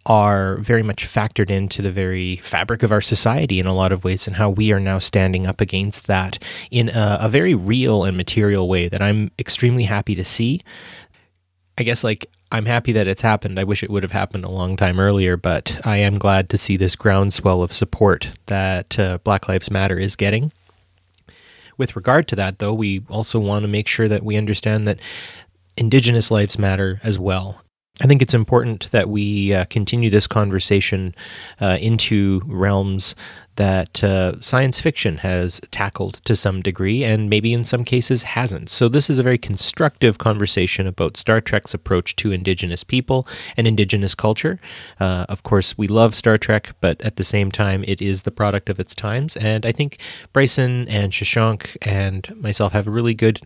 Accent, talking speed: American, 190 wpm